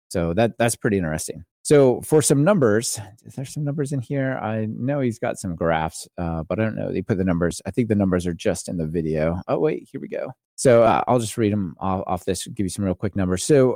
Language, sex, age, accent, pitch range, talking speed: English, male, 30-49, American, 95-125 Hz, 255 wpm